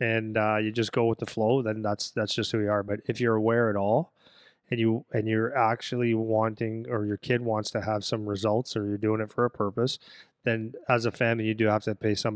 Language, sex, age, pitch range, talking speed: English, male, 20-39, 110-125 Hz, 250 wpm